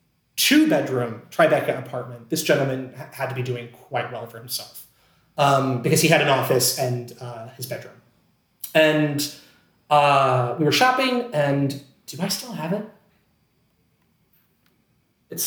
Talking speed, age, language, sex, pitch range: 140 wpm, 30-49, English, male, 135-195 Hz